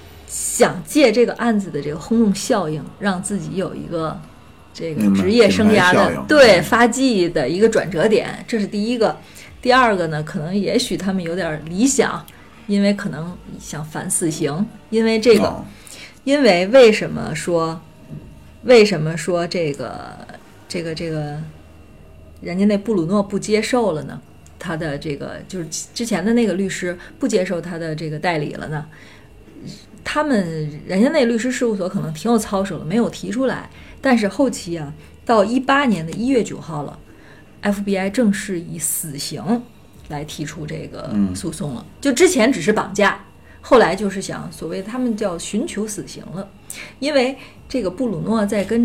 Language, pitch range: Chinese, 165-225 Hz